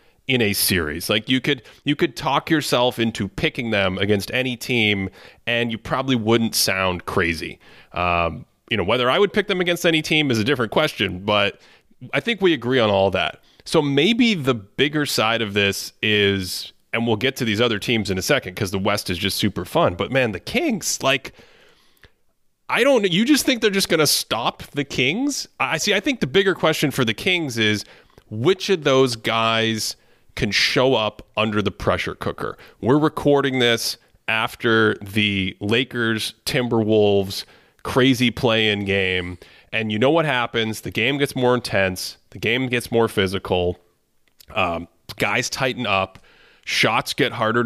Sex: male